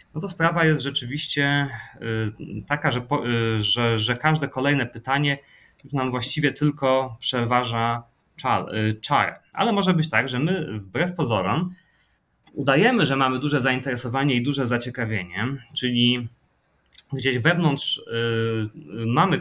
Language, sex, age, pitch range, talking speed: Polish, male, 30-49, 115-145 Hz, 120 wpm